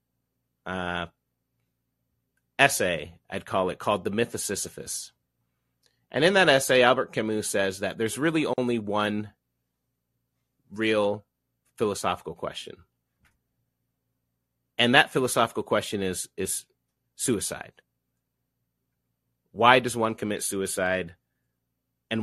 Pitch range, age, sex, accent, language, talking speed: 85-120 Hz, 30-49, male, American, English, 105 wpm